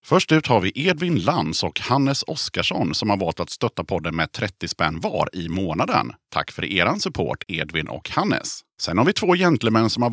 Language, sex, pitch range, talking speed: Swedish, male, 95-140 Hz, 205 wpm